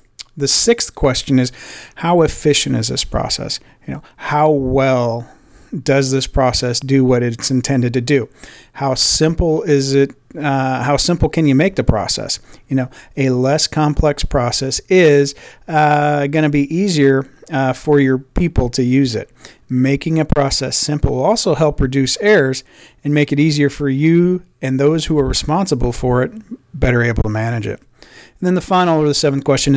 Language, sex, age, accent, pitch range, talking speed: English, male, 40-59, American, 130-155 Hz, 175 wpm